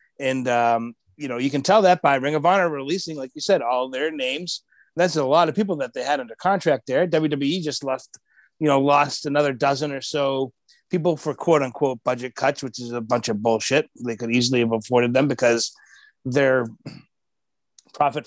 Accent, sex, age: American, male, 30-49